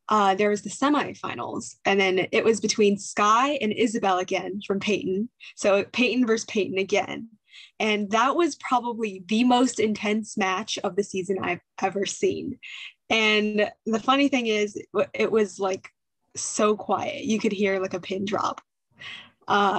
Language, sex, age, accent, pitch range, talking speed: English, female, 10-29, American, 200-235 Hz, 160 wpm